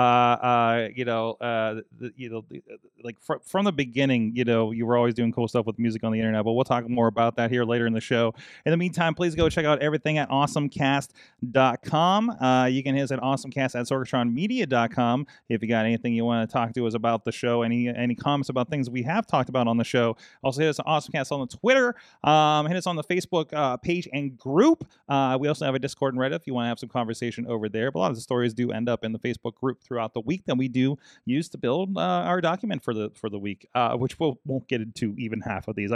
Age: 30-49